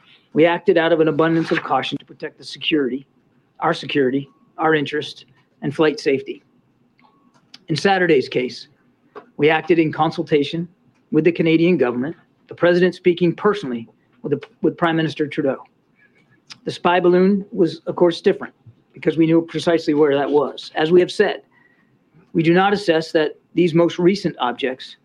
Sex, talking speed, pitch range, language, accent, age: male, 160 wpm, 150-180 Hz, English, American, 40-59